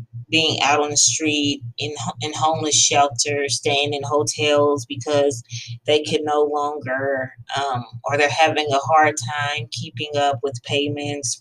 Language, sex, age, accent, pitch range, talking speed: English, female, 20-39, American, 120-150 Hz, 145 wpm